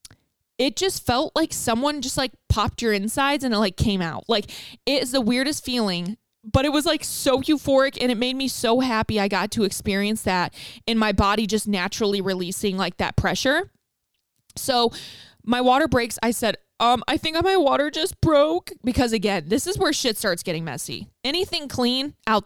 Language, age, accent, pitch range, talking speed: English, 20-39, American, 195-270 Hz, 190 wpm